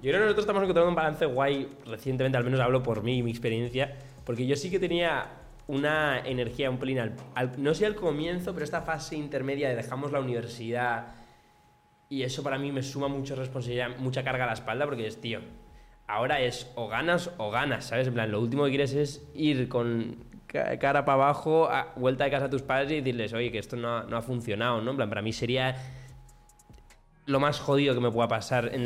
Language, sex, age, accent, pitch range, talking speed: Spanish, male, 20-39, Spanish, 120-145 Hz, 215 wpm